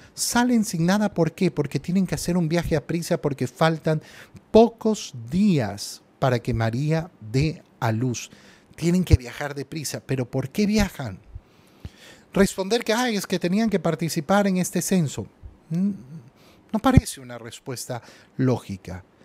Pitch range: 130-185 Hz